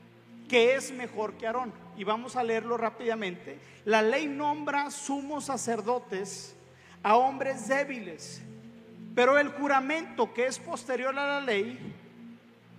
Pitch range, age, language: 225-270 Hz, 40-59, Spanish